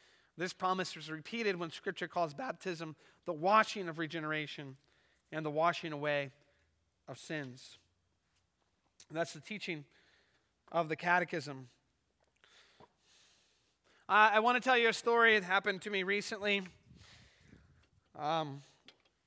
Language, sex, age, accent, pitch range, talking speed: English, male, 30-49, American, 155-190 Hz, 115 wpm